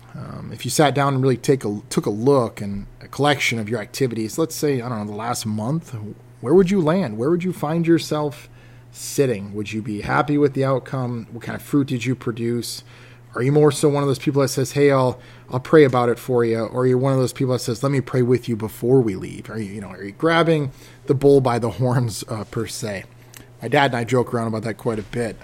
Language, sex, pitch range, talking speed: English, male, 115-145 Hz, 270 wpm